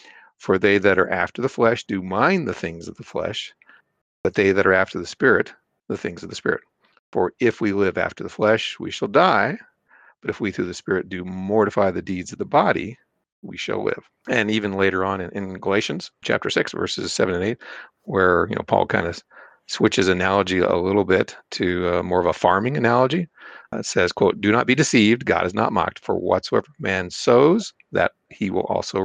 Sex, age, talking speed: male, 50-69, 215 wpm